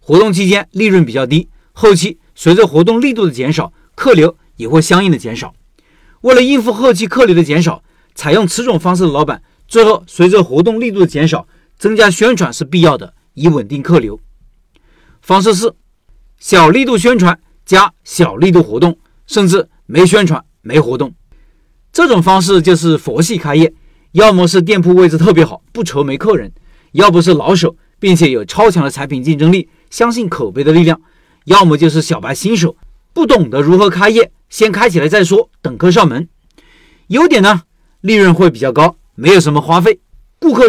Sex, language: male, Chinese